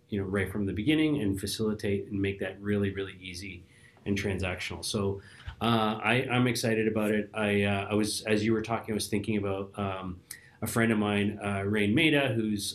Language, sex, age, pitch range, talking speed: English, male, 30-49, 95-110 Hz, 205 wpm